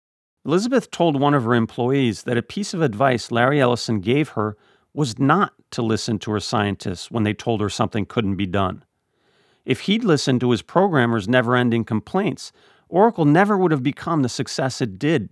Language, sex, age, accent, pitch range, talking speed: English, male, 40-59, American, 110-150 Hz, 185 wpm